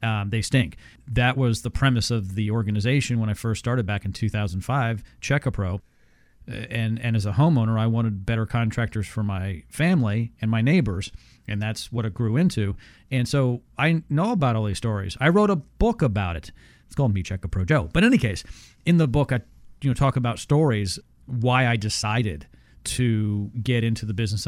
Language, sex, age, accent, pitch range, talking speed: English, male, 40-59, American, 105-145 Hz, 195 wpm